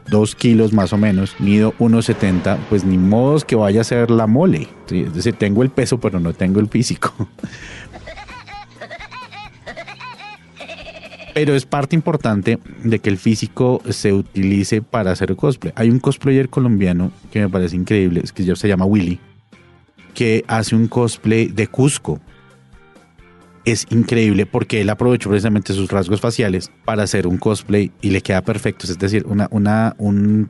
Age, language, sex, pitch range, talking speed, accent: 30-49, Spanish, male, 95-120 Hz, 155 wpm, Colombian